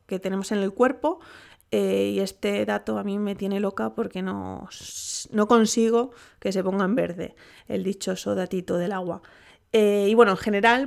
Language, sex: Spanish, female